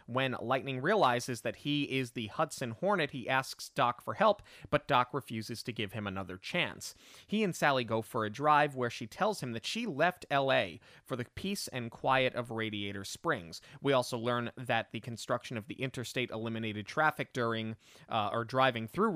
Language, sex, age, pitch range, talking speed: English, male, 30-49, 115-145 Hz, 190 wpm